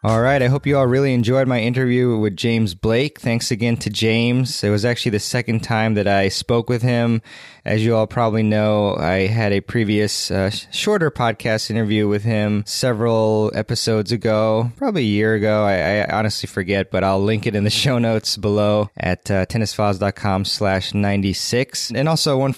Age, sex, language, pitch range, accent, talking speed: 20-39, male, English, 105-125 Hz, American, 190 wpm